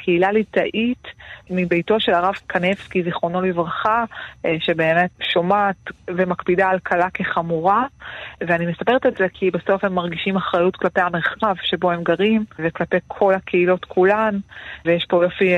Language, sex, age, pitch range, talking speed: Hebrew, female, 30-49, 175-205 Hz, 135 wpm